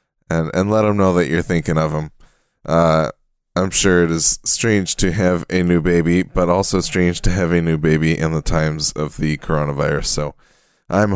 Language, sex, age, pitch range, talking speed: English, male, 20-39, 80-95 Hz, 200 wpm